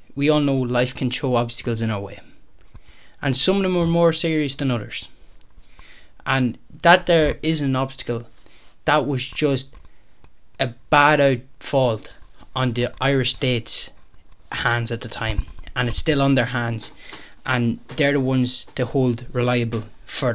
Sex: male